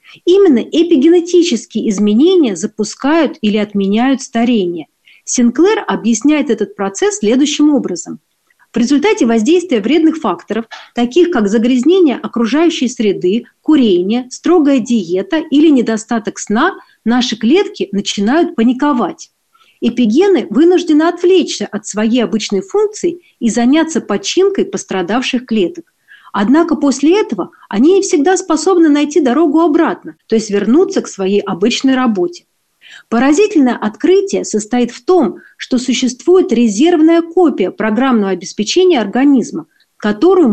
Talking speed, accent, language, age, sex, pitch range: 110 wpm, native, Russian, 40-59, female, 220-330 Hz